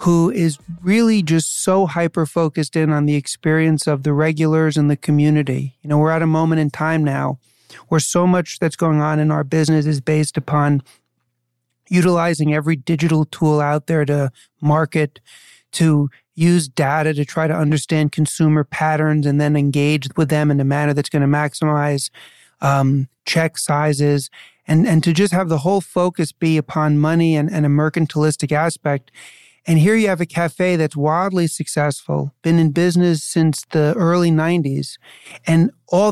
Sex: male